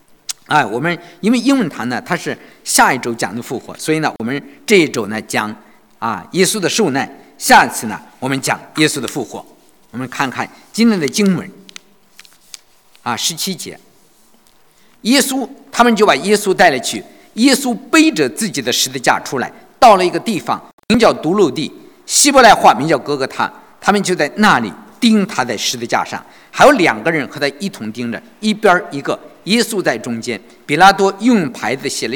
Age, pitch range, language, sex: 50-69, 155-245 Hz, English, male